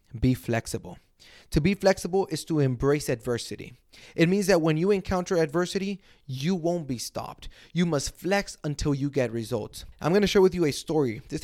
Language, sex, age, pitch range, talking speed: English, male, 20-39, 120-160 Hz, 190 wpm